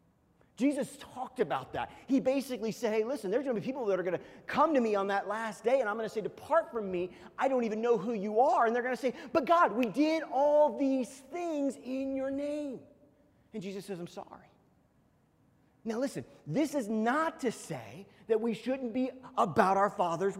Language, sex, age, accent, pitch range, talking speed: English, male, 30-49, American, 170-265 Hz, 220 wpm